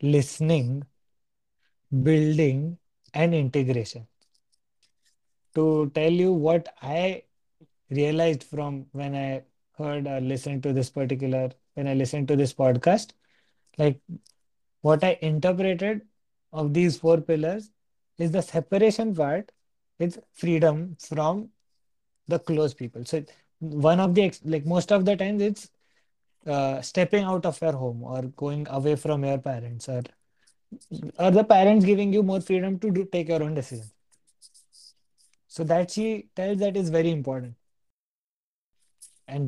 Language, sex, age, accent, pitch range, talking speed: Hindi, male, 20-39, native, 130-170 Hz, 130 wpm